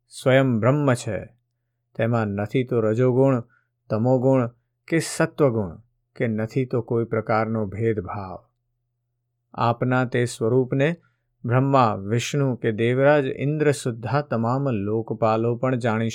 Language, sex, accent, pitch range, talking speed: Gujarati, male, native, 115-135 Hz, 110 wpm